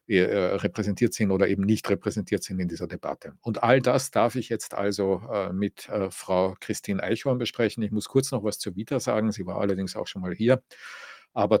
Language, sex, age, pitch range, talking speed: English, male, 50-69, 100-115 Hz, 190 wpm